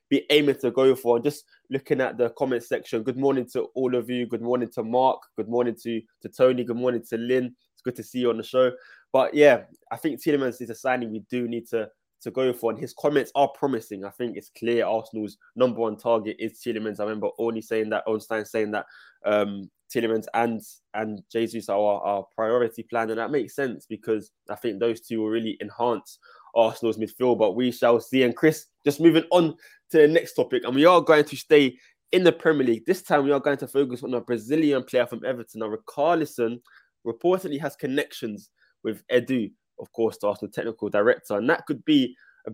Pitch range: 115-140 Hz